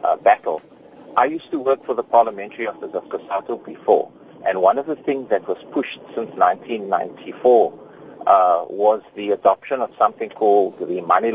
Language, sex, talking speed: English, male, 170 wpm